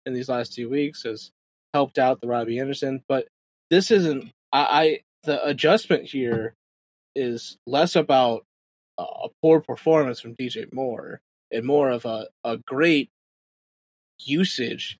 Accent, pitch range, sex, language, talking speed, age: American, 125-155 Hz, male, English, 145 wpm, 20-39